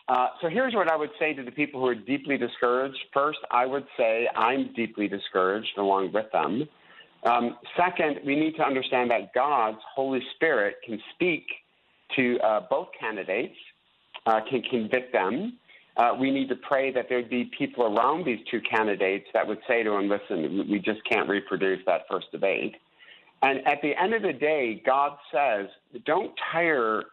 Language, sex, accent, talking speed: English, male, American, 180 wpm